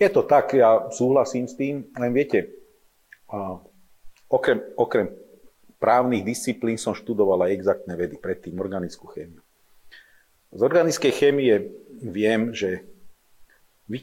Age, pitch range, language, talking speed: 40-59, 100-135 Hz, Slovak, 115 wpm